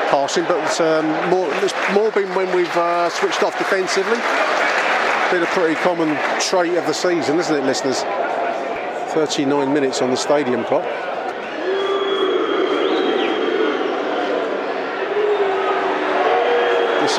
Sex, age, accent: male, 50-69, British